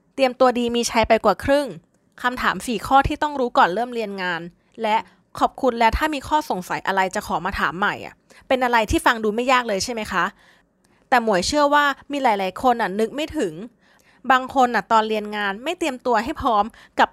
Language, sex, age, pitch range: Thai, female, 20-39, 205-265 Hz